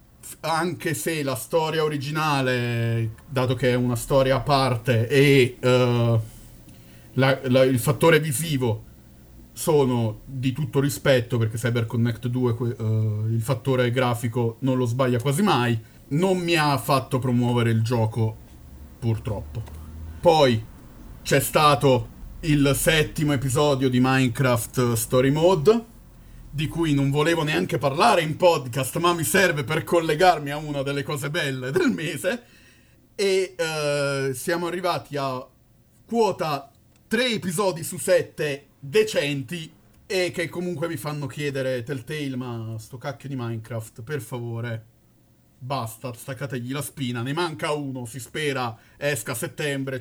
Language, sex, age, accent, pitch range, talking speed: Italian, male, 40-59, native, 120-150 Hz, 135 wpm